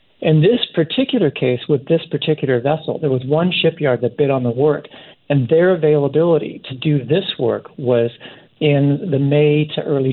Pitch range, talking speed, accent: 135-160 Hz, 180 wpm, American